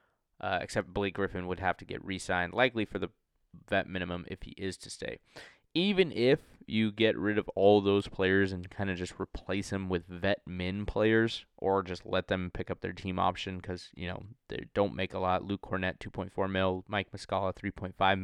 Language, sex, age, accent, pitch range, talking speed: English, male, 20-39, American, 90-105 Hz, 205 wpm